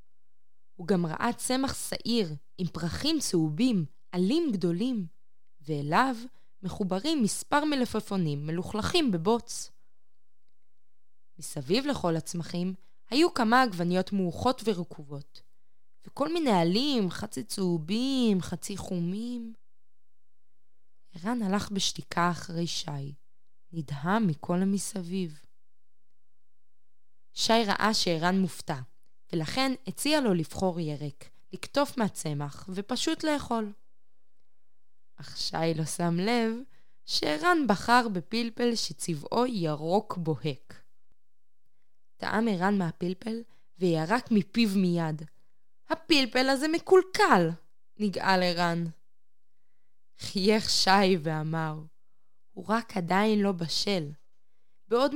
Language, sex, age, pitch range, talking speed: Hebrew, female, 20-39, 165-230 Hz, 90 wpm